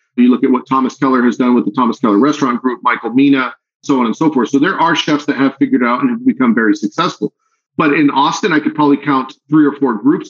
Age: 40-59